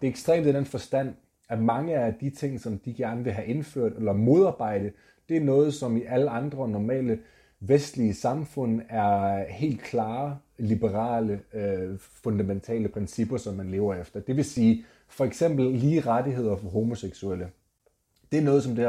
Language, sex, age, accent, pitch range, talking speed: Danish, male, 30-49, native, 105-130 Hz, 170 wpm